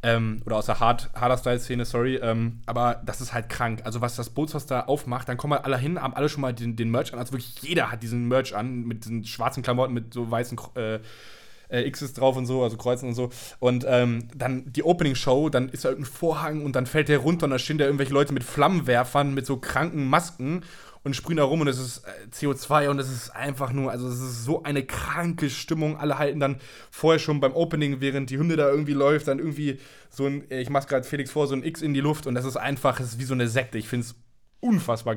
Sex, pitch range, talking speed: male, 120-145 Hz, 240 wpm